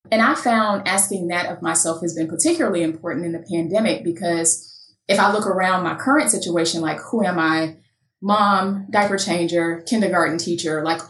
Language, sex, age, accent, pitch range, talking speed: English, female, 20-39, American, 165-210 Hz, 175 wpm